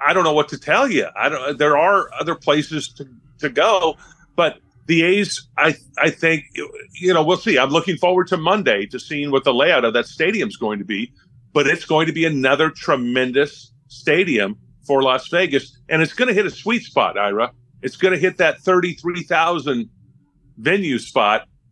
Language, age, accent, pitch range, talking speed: English, 40-59, American, 130-160 Hz, 195 wpm